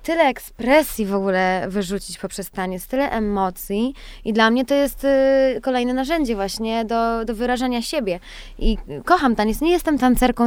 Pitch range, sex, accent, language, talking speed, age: 205-245 Hz, female, native, Polish, 155 wpm, 20-39